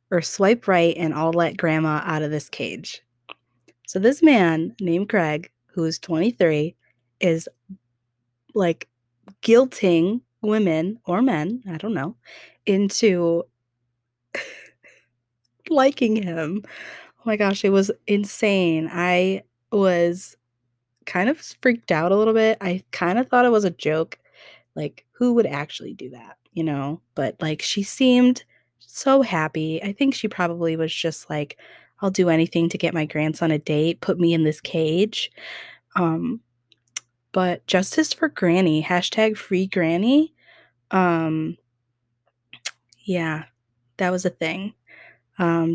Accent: American